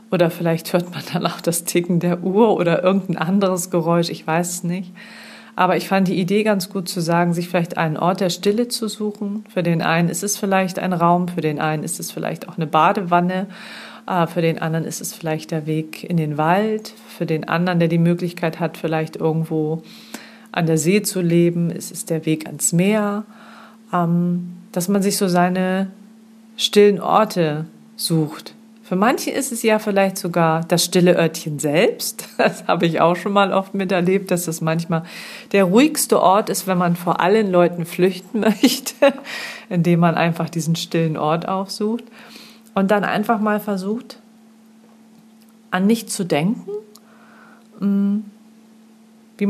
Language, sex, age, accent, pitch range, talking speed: German, female, 40-59, German, 175-220 Hz, 170 wpm